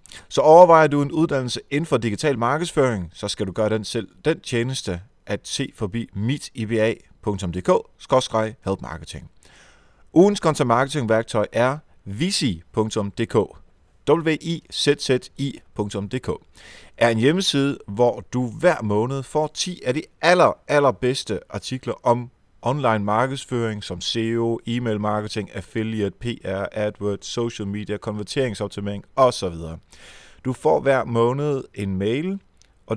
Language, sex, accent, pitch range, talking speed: Danish, male, native, 105-135 Hz, 110 wpm